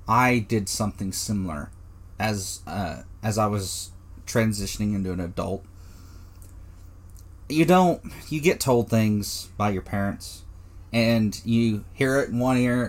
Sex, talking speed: male, 140 wpm